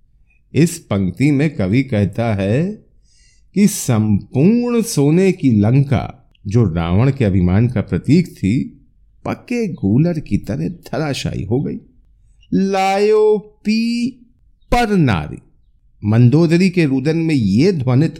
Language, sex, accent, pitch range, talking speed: Hindi, male, native, 120-190 Hz, 110 wpm